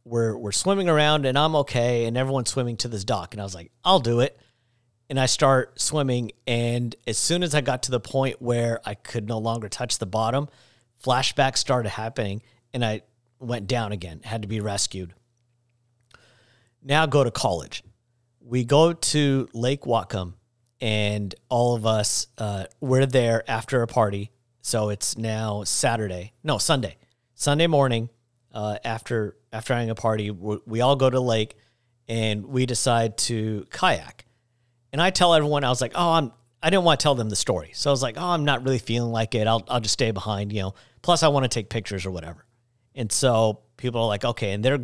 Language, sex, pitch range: English, male, 110-130 Hz